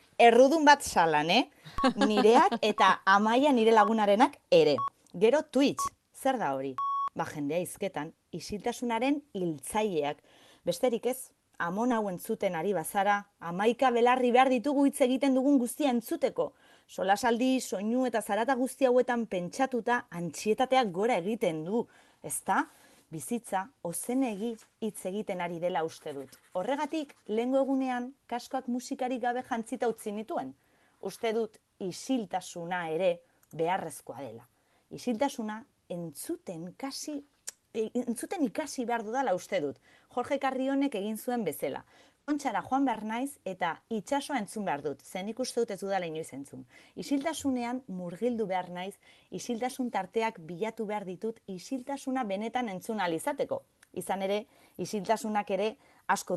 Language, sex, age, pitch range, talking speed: Spanish, female, 30-49, 185-255 Hz, 120 wpm